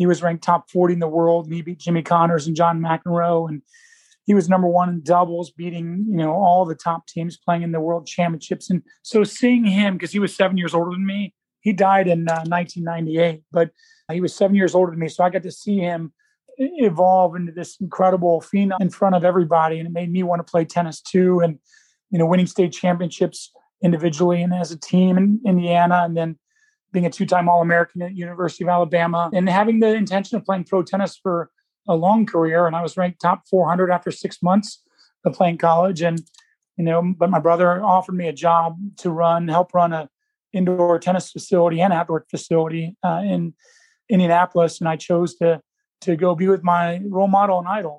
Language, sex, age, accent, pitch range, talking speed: English, male, 30-49, American, 170-190 Hz, 215 wpm